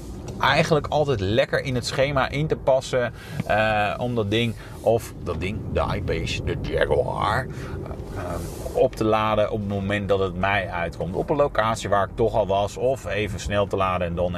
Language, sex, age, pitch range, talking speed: Dutch, male, 30-49, 100-130 Hz, 190 wpm